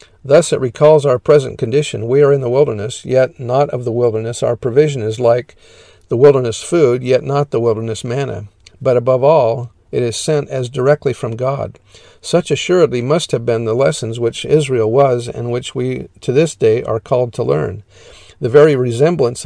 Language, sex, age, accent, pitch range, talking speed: English, male, 50-69, American, 115-145 Hz, 190 wpm